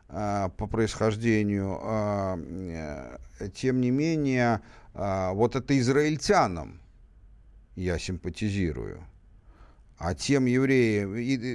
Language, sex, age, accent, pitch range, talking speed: Russian, male, 50-69, native, 90-120 Hz, 70 wpm